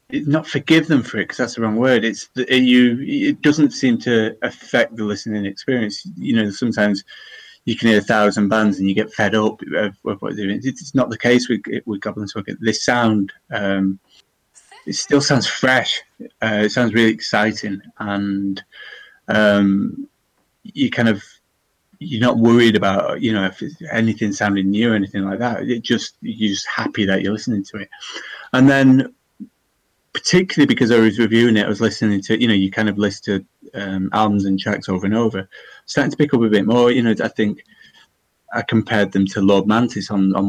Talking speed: 200 wpm